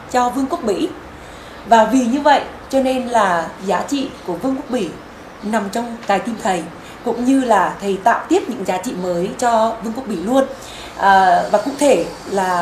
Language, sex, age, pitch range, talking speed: Vietnamese, female, 20-39, 210-290 Hz, 200 wpm